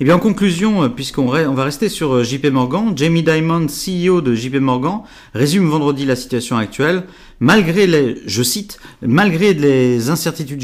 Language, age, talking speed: French, 40-59, 170 wpm